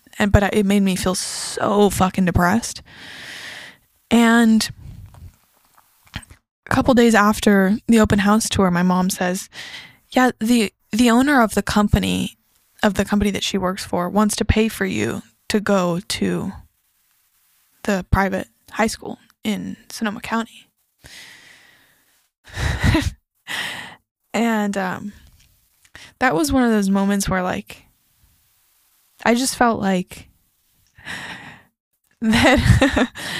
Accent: American